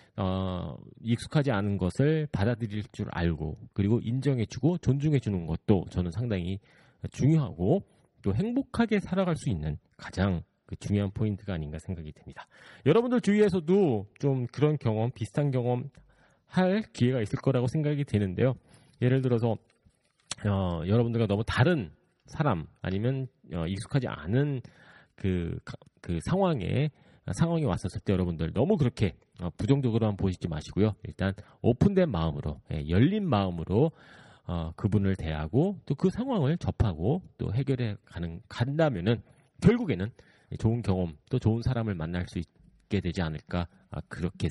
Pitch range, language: 95-140 Hz, Korean